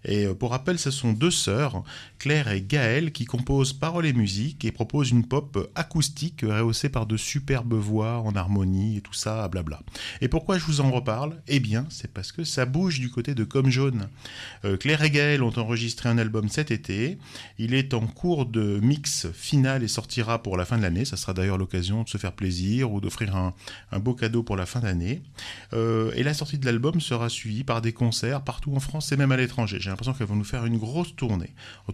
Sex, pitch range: male, 105-140 Hz